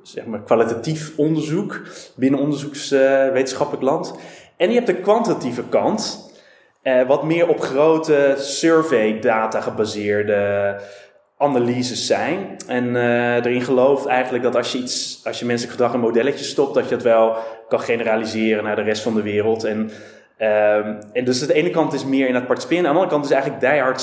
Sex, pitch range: male, 125-170 Hz